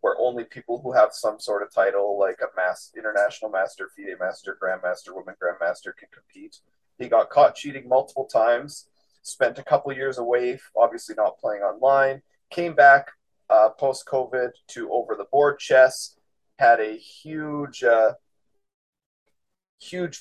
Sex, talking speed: male, 145 wpm